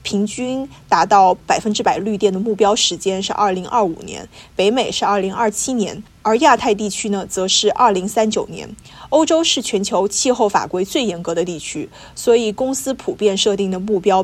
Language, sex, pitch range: Chinese, female, 195-245 Hz